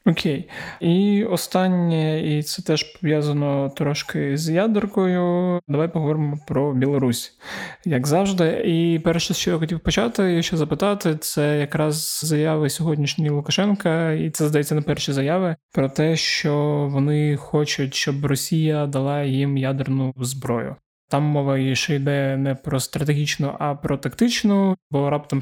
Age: 20-39